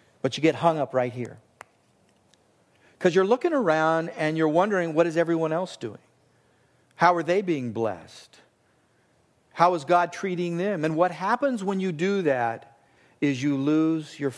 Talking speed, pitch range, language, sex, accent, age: 165 wpm, 160-210 Hz, English, male, American, 50-69